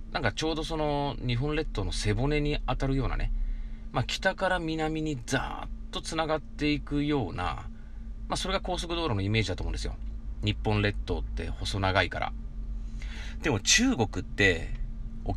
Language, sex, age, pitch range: Japanese, male, 30-49, 100-130 Hz